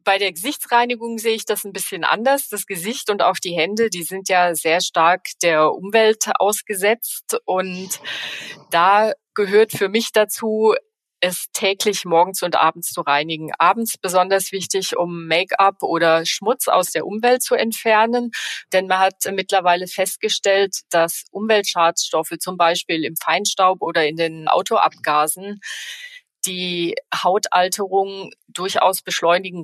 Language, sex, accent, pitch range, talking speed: German, female, German, 170-205 Hz, 135 wpm